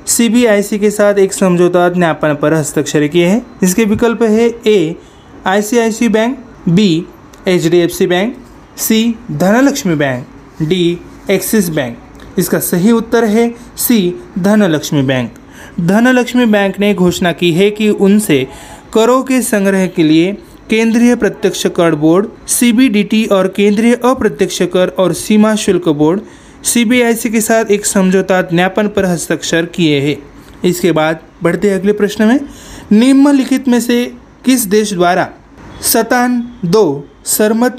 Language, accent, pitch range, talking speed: Marathi, native, 175-230 Hz, 140 wpm